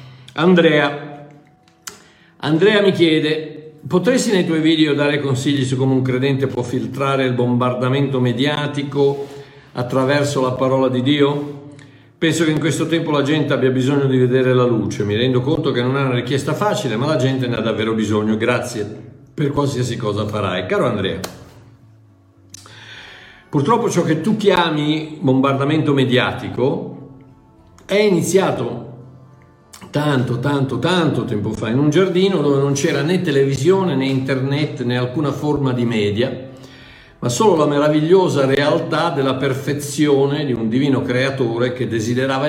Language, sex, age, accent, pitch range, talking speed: Italian, male, 50-69, native, 125-150 Hz, 145 wpm